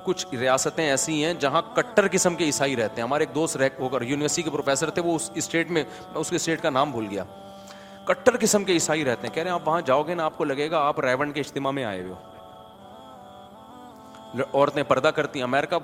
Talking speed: 105 wpm